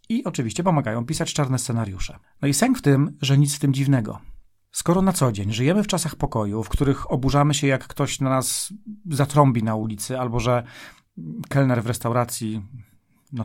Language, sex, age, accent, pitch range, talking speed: Polish, male, 40-59, native, 120-145 Hz, 185 wpm